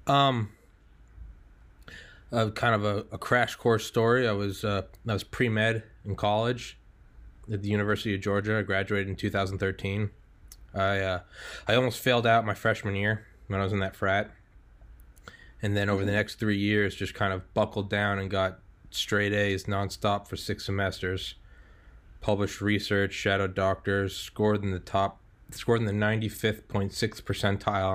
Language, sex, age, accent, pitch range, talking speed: English, male, 20-39, American, 95-105 Hz, 170 wpm